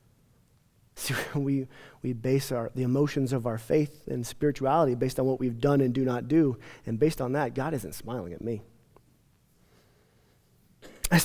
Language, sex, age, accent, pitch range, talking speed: English, male, 30-49, American, 150-235 Hz, 165 wpm